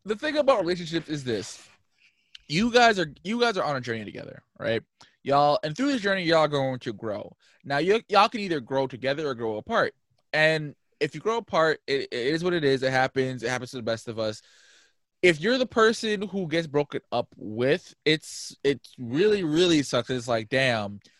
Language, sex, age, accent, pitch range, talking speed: English, male, 20-39, American, 115-170 Hz, 210 wpm